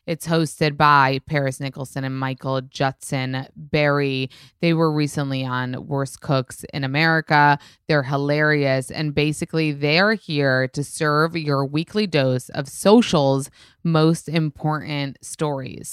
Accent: American